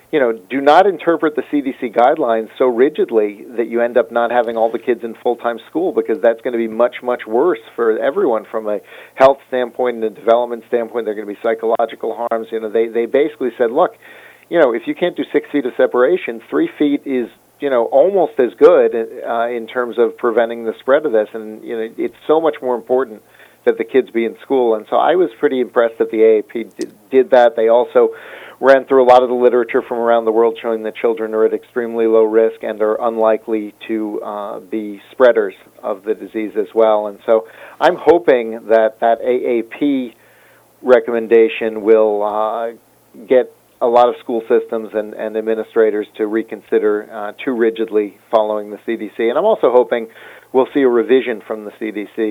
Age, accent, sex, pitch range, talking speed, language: 50-69, American, male, 110-125 Hz, 205 wpm, English